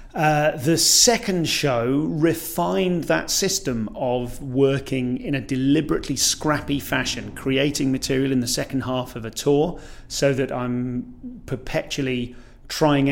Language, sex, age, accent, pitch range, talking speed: English, male, 30-49, British, 125-150 Hz, 130 wpm